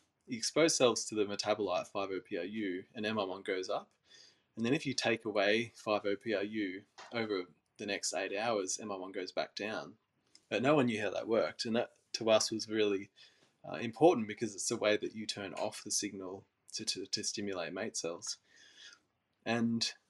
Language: English